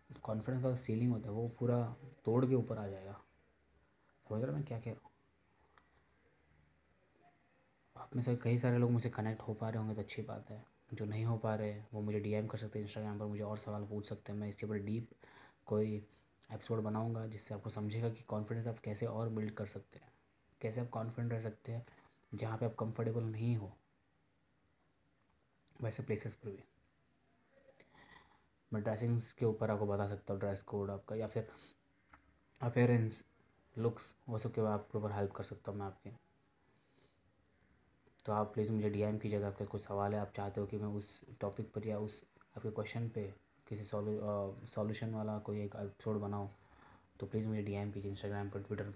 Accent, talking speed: native, 190 wpm